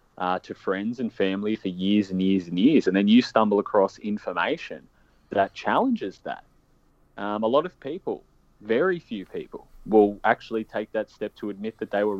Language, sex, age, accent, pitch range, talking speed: English, male, 20-39, Australian, 95-105 Hz, 185 wpm